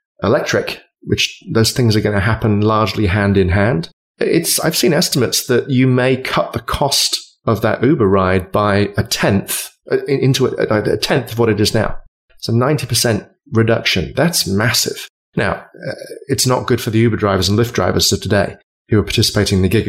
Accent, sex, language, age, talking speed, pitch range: British, male, English, 30-49, 195 wpm, 105-130 Hz